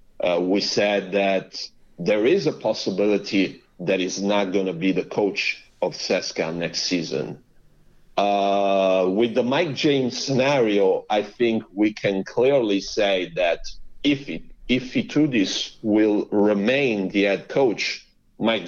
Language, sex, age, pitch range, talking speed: Italian, male, 50-69, 100-125 Hz, 135 wpm